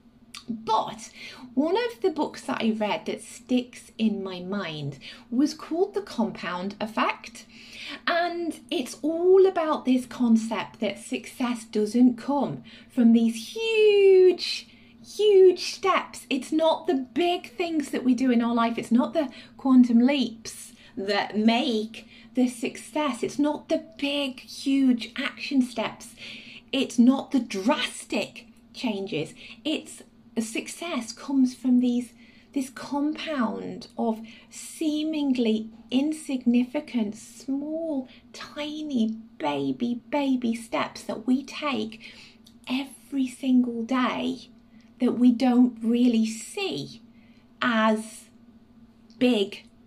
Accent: British